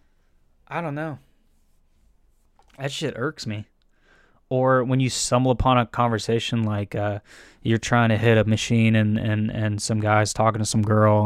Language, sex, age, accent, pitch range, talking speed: English, male, 20-39, American, 110-130 Hz, 165 wpm